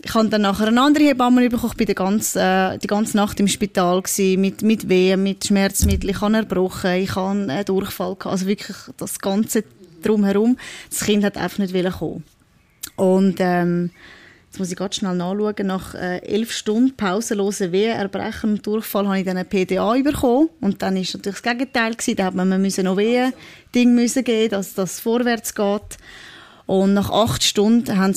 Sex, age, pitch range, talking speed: female, 10-29, 185-210 Hz, 170 wpm